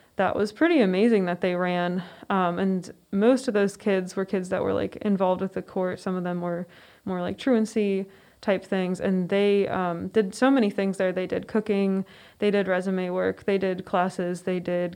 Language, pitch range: English, 185-215 Hz